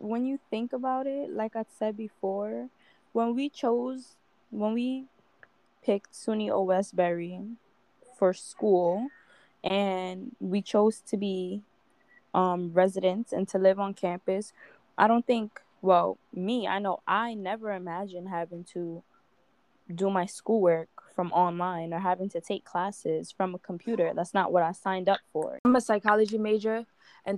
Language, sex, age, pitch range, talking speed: English, female, 10-29, 195-230 Hz, 150 wpm